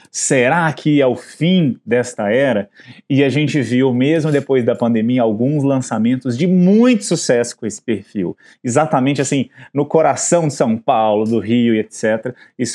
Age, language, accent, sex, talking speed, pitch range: 20-39, Portuguese, Brazilian, male, 165 wpm, 115-170 Hz